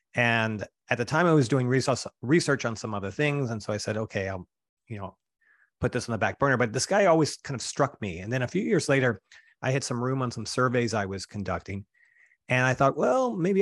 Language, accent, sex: English, American, male